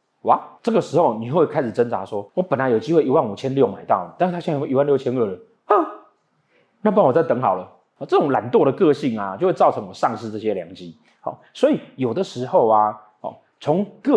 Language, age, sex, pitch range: Chinese, 30-49, male, 105-140 Hz